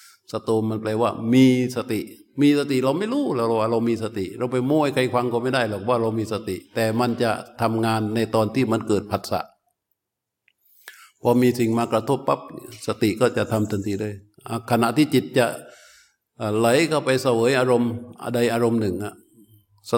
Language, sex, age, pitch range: Thai, male, 60-79, 105-120 Hz